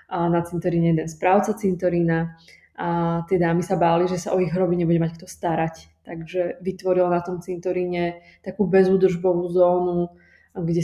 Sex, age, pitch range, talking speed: female, 20-39, 175-185 Hz, 160 wpm